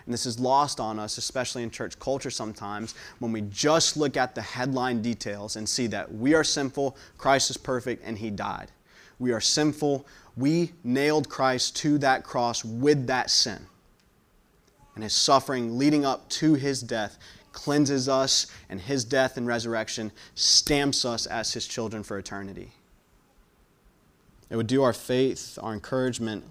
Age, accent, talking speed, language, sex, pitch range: 20-39, American, 165 wpm, English, male, 105-130 Hz